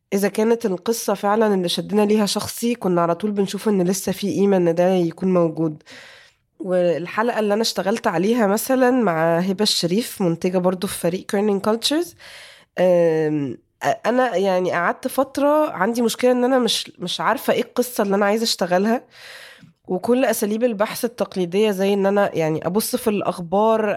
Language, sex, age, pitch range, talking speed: Arabic, female, 20-39, 180-225 Hz, 160 wpm